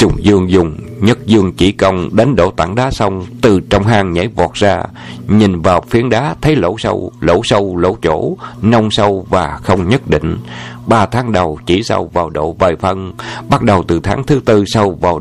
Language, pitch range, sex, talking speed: Vietnamese, 90-120 Hz, male, 205 wpm